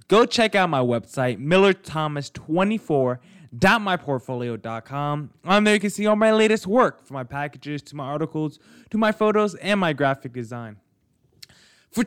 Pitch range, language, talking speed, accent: 135-185 Hz, English, 145 wpm, American